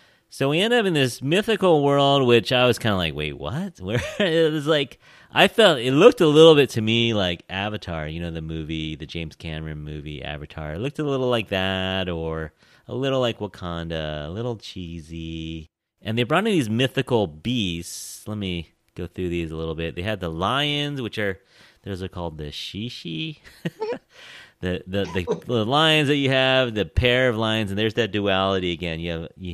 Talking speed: 205 wpm